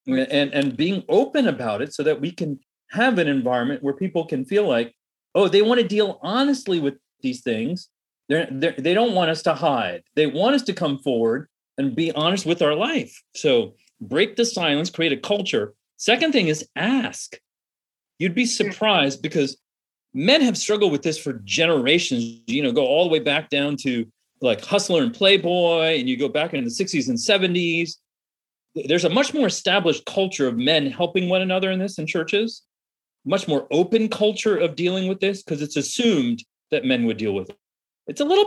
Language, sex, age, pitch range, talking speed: English, male, 40-59, 155-230 Hz, 195 wpm